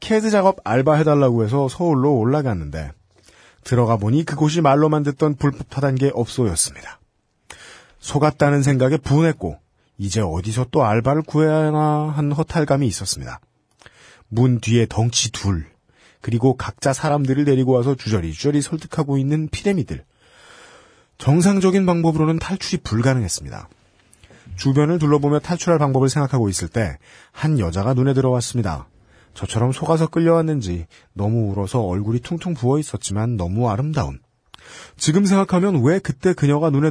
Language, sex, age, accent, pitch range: Korean, male, 40-59, native, 105-155 Hz